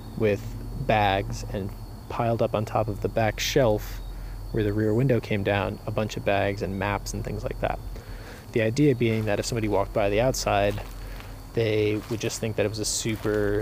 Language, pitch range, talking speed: English, 105-115 Hz, 205 wpm